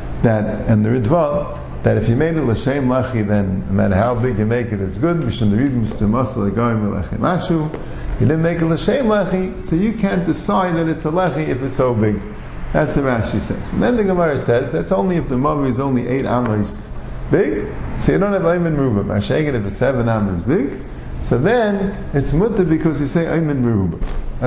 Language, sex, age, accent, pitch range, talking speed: English, male, 50-69, American, 105-170 Hz, 205 wpm